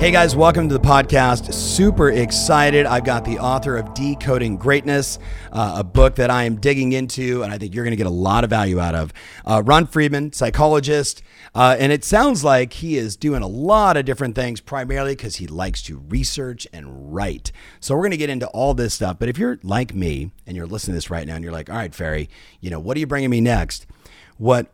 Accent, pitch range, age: American, 100-140 Hz, 40-59